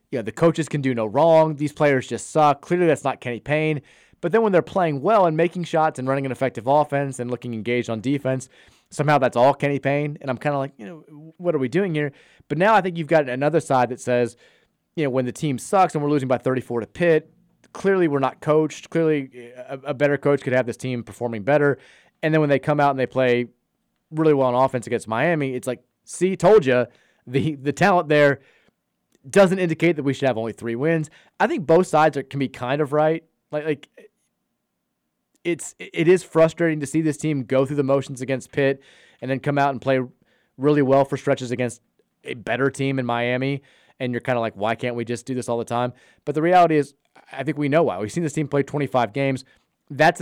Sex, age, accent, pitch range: male, 30-49, American, 130-155 Hz